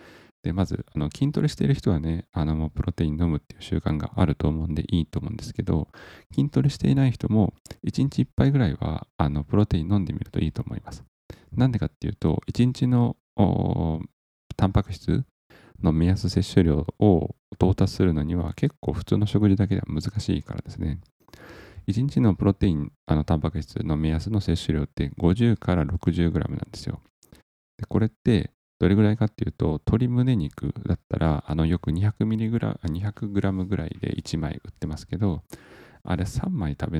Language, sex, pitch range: Japanese, male, 80-110 Hz